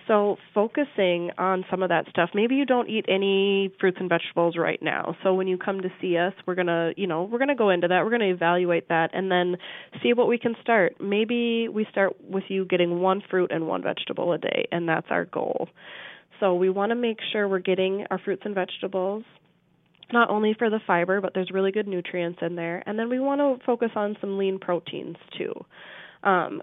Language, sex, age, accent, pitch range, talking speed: English, female, 20-39, American, 180-220 Hz, 225 wpm